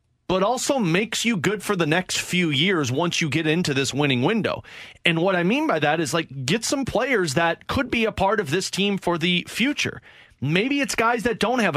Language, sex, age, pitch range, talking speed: English, male, 30-49, 165-215 Hz, 230 wpm